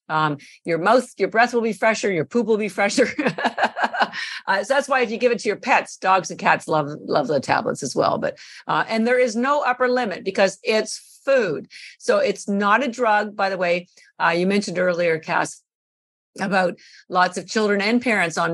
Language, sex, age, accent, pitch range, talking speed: English, female, 50-69, American, 165-225 Hz, 205 wpm